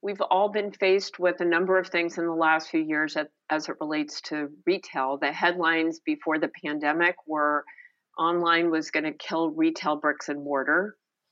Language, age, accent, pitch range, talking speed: English, 50-69, American, 155-180 Hz, 180 wpm